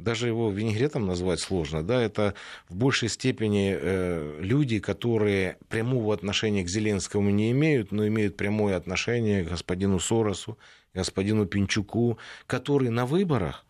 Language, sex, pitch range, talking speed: Russian, male, 95-135 Hz, 140 wpm